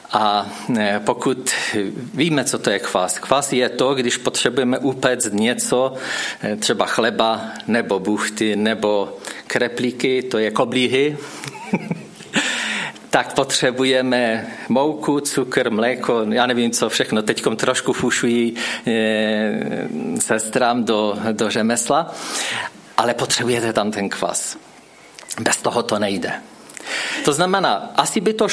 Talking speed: 110 wpm